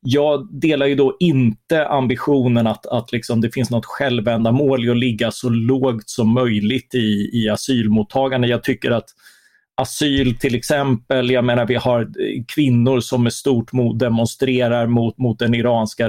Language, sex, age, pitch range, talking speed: Swedish, male, 30-49, 115-135 Hz, 155 wpm